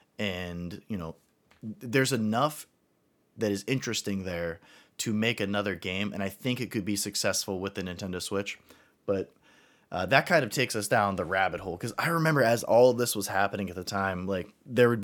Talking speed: 200 wpm